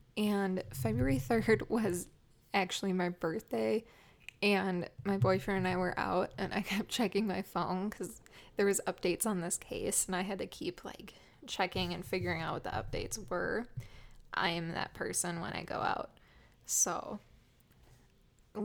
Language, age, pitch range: English, 20-39, 180-220 Hz